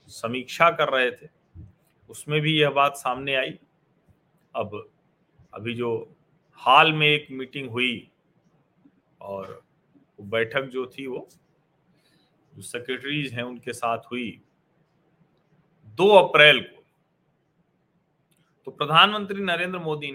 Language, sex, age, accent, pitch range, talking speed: Hindi, male, 40-59, native, 135-175 Hz, 105 wpm